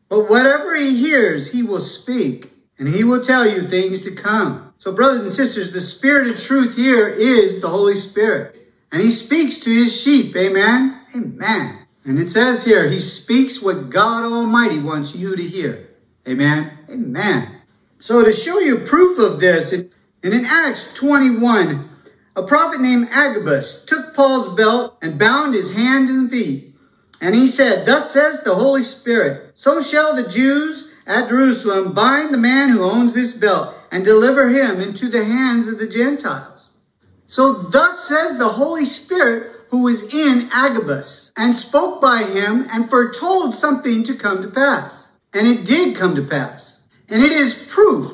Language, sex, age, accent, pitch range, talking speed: English, male, 40-59, American, 200-270 Hz, 170 wpm